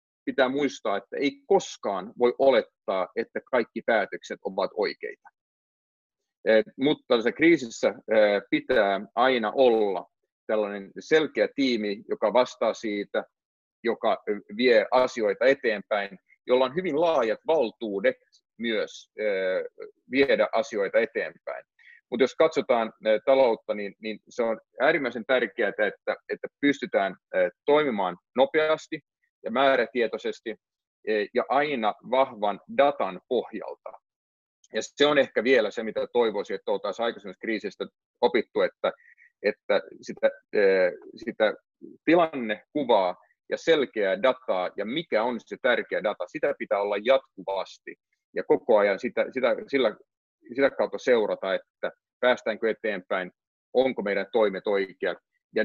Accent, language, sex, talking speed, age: native, Finnish, male, 115 wpm, 40-59